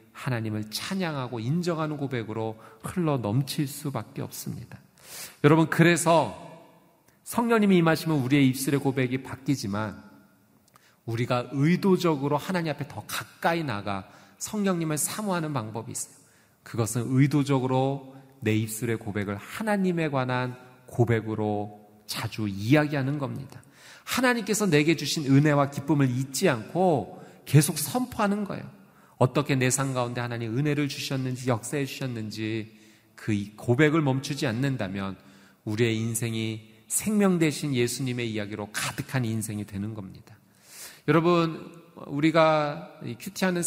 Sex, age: male, 40-59